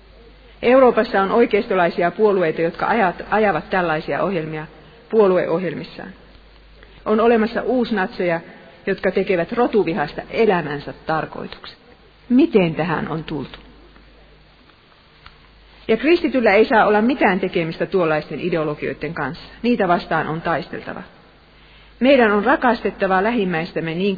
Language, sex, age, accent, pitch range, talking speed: Finnish, female, 40-59, native, 165-220 Hz, 100 wpm